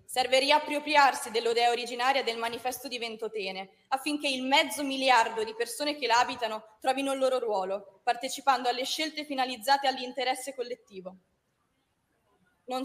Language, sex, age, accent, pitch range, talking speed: Italian, female, 20-39, native, 210-260 Hz, 130 wpm